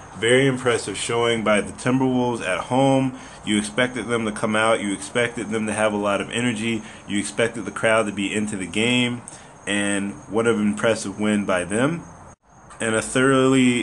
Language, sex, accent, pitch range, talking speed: English, male, American, 100-120 Hz, 180 wpm